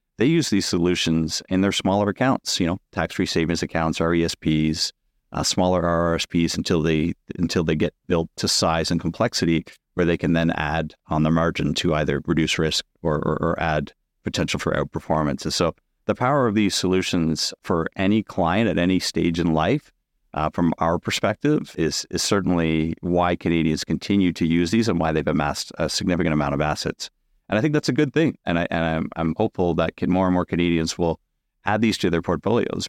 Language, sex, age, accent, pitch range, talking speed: English, male, 40-59, American, 80-90 Hz, 195 wpm